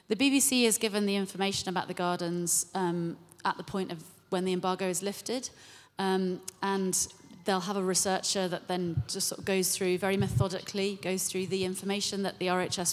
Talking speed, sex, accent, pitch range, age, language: 190 wpm, female, British, 175-200 Hz, 30-49, English